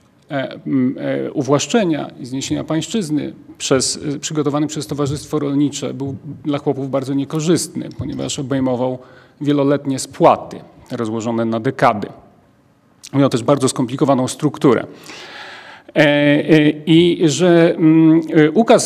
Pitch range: 145-180 Hz